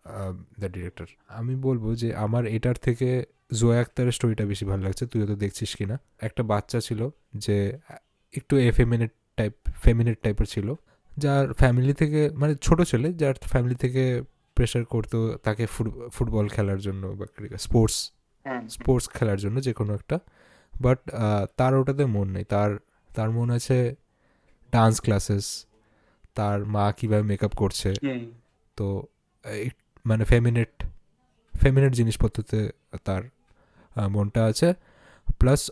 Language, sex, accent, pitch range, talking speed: Bengali, male, native, 105-130 Hz, 130 wpm